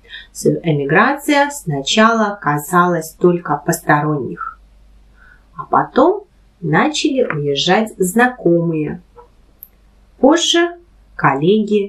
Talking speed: 60 wpm